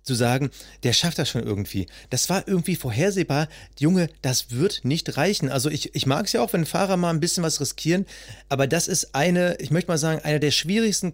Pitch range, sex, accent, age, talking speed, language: 125-160 Hz, male, German, 30-49, 220 wpm, German